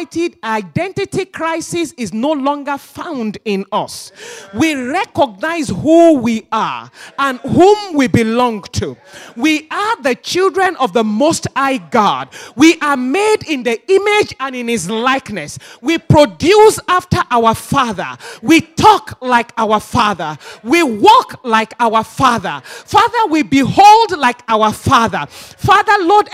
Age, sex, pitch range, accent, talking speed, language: 40-59, male, 260-375 Hz, Nigerian, 135 wpm, English